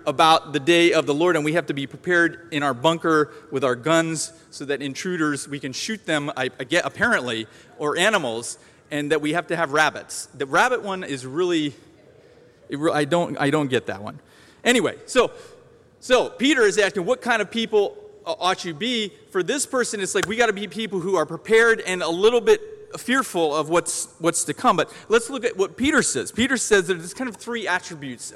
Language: English